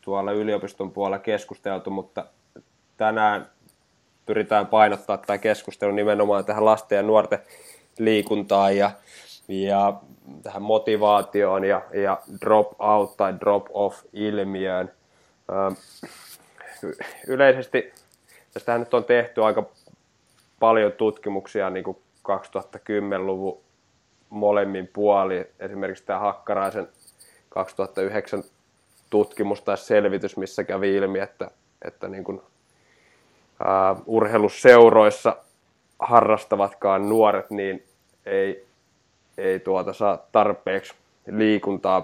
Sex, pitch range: male, 100-110 Hz